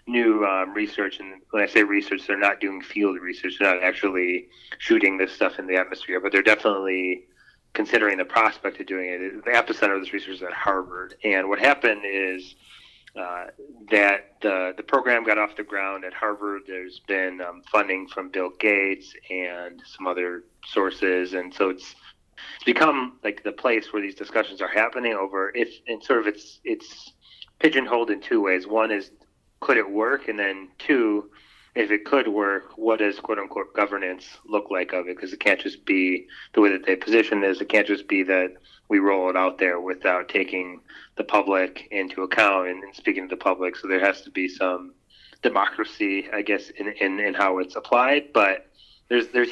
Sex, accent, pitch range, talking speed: male, American, 95-105 Hz, 190 wpm